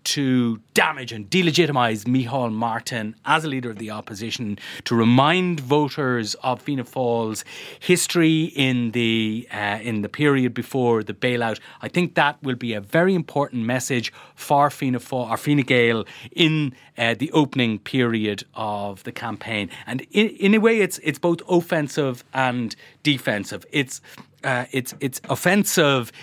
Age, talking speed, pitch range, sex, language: 30-49, 150 wpm, 120-160 Hz, male, English